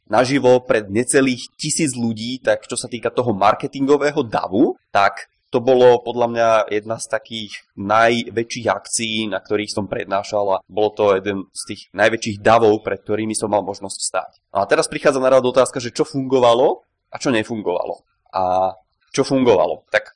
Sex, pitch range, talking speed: male, 100-125 Hz, 165 wpm